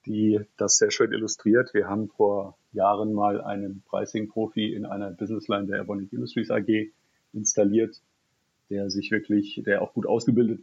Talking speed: 150 wpm